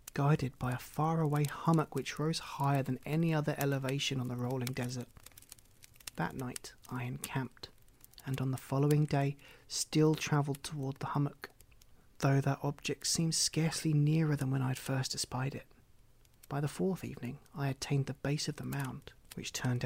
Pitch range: 125-145 Hz